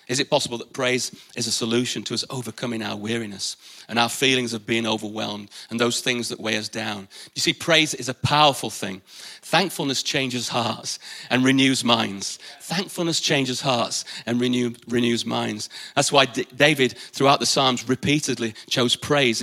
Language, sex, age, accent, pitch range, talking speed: English, male, 40-59, British, 120-145 Hz, 165 wpm